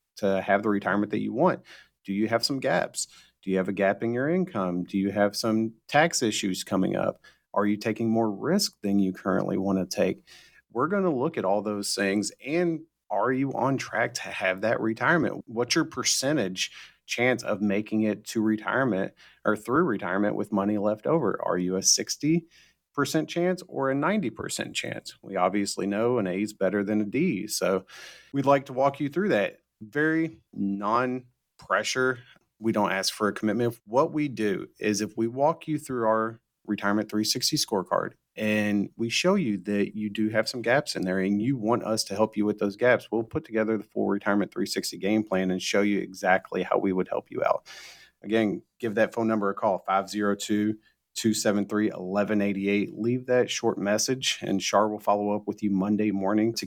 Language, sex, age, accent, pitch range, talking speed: English, male, 40-59, American, 100-125 Hz, 190 wpm